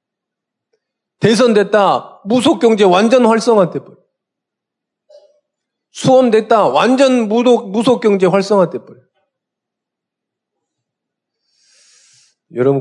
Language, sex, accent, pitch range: Korean, male, native, 130-220 Hz